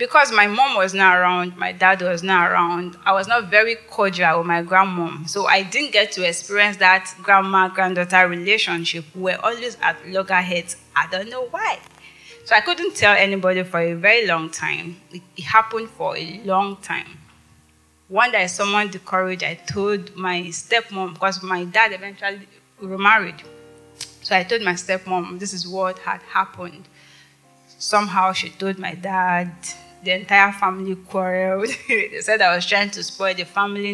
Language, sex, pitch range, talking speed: English, female, 175-200 Hz, 170 wpm